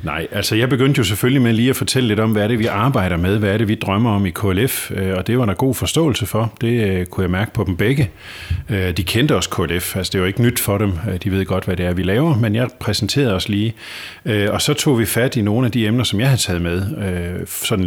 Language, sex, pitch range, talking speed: Danish, male, 95-125 Hz, 270 wpm